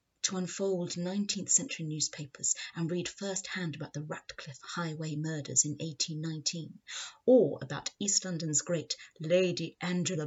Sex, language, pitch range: female, English, 150-185 Hz